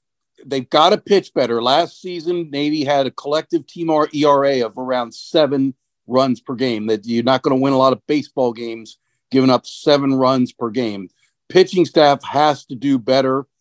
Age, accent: 50-69, American